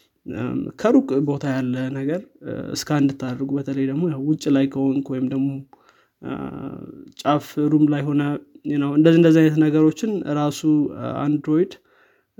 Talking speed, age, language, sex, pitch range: 110 wpm, 20-39, Amharic, male, 140-155 Hz